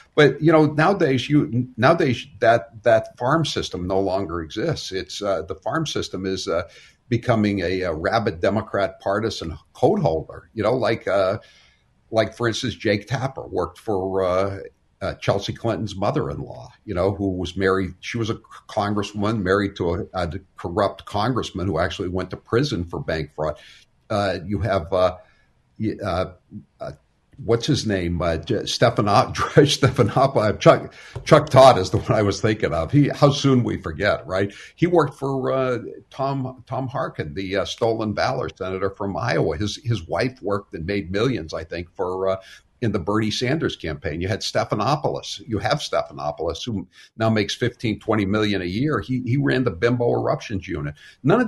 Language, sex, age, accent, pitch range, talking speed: English, male, 60-79, American, 95-130 Hz, 170 wpm